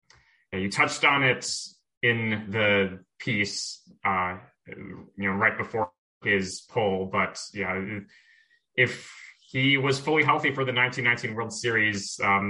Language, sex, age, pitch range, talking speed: English, male, 20-39, 95-120 Hz, 130 wpm